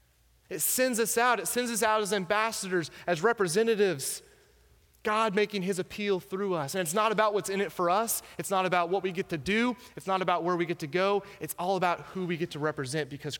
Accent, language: American, English